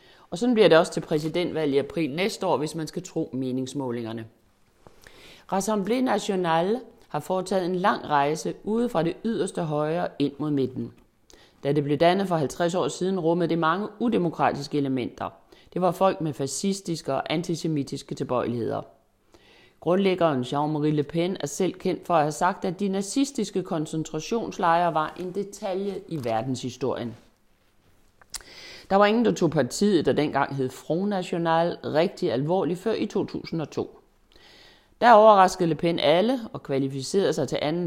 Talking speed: 155 wpm